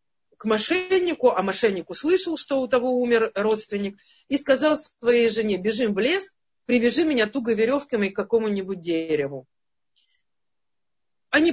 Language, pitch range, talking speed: Russian, 200-270 Hz, 130 wpm